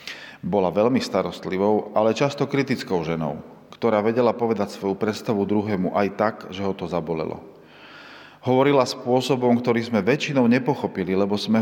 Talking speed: 140 wpm